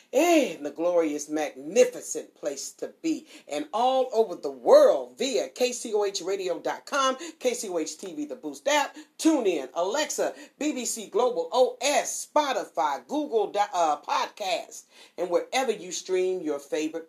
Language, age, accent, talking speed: English, 40-59, American, 125 wpm